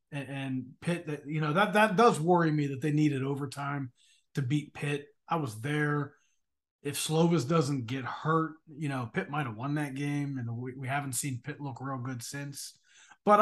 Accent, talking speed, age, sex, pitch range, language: American, 190 wpm, 30-49, male, 130-170 Hz, English